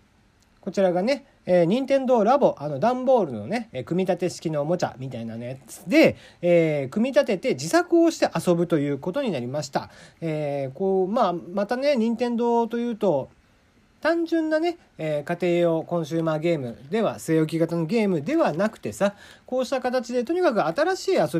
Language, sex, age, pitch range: Japanese, male, 40-59, 145-235 Hz